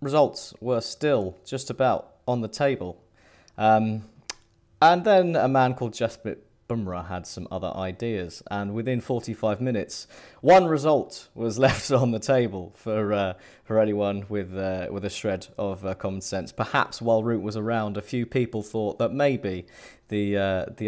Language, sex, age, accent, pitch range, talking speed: English, male, 30-49, British, 100-125 Hz, 165 wpm